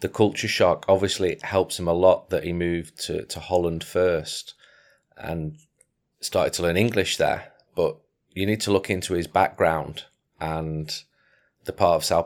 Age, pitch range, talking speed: 30-49, 85-95 Hz, 165 wpm